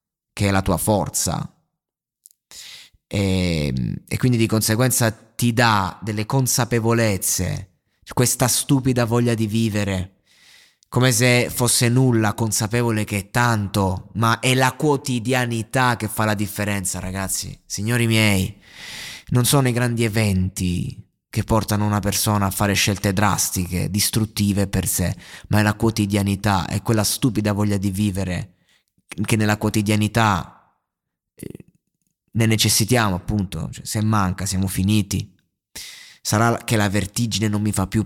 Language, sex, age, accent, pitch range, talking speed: Italian, male, 20-39, native, 100-120 Hz, 135 wpm